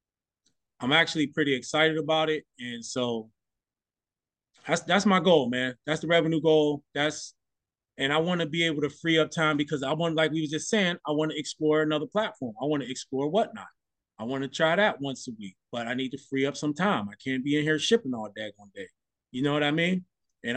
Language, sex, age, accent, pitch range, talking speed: English, male, 20-39, American, 150-200 Hz, 230 wpm